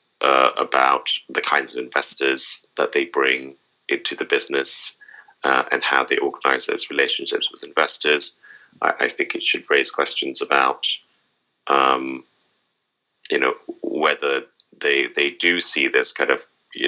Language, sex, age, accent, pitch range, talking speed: English, male, 30-49, British, 320-425 Hz, 145 wpm